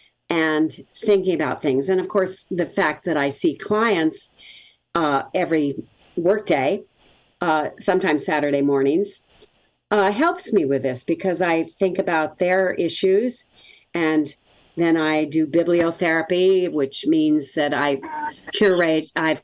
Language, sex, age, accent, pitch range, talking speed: English, female, 50-69, American, 145-190 Hz, 120 wpm